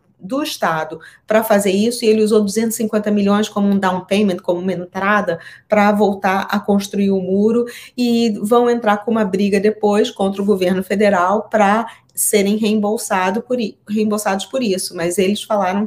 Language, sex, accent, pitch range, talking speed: Portuguese, female, Brazilian, 195-240 Hz, 175 wpm